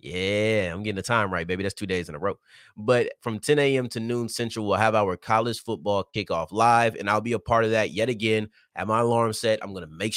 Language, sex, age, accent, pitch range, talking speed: English, male, 30-49, American, 95-120 Hz, 255 wpm